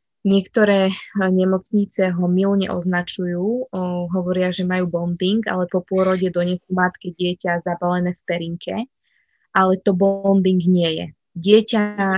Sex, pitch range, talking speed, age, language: female, 175-200 Hz, 125 wpm, 20-39, Slovak